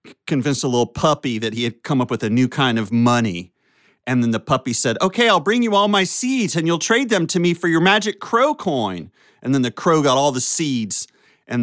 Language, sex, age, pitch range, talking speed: English, male, 40-59, 115-160 Hz, 240 wpm